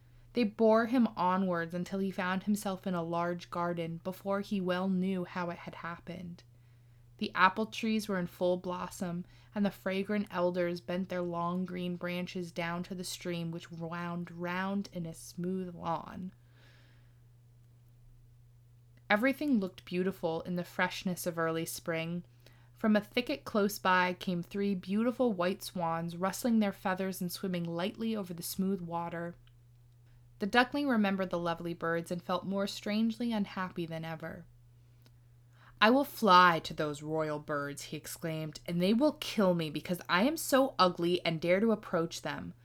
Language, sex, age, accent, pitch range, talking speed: English, female, 20-39, American, 160-195 Hz, 160 wpm